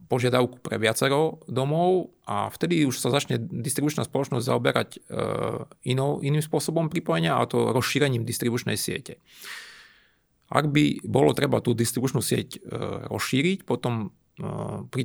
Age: 30-49